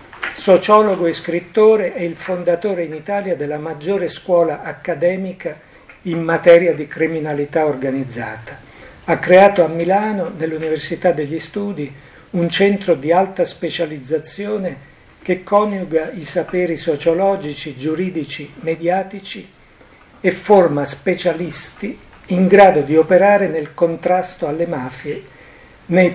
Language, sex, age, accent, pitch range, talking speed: Italian, male, 60-79, native, 145-180 Hz, 110 wpm